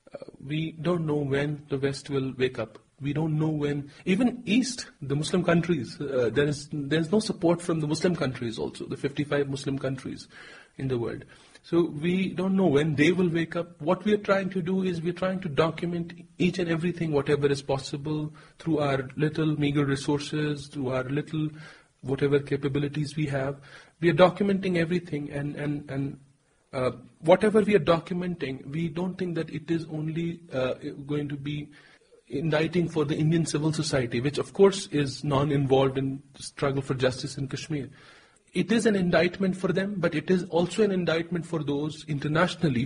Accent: Indian